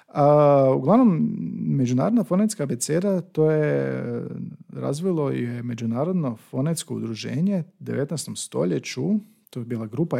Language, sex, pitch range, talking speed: Croatian, male, 120-175 Hz, 110 wpm